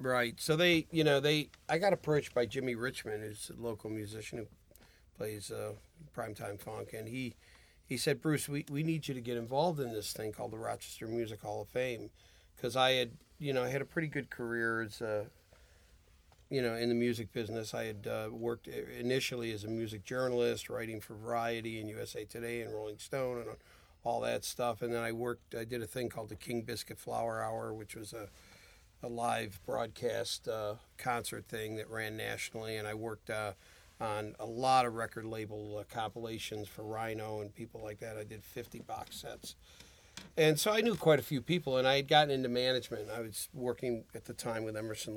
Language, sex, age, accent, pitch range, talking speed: English, male, 40-59, American, 105-125 Hz, 205 wpm